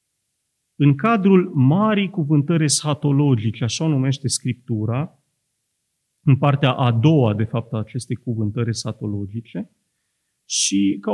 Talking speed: 110 wpm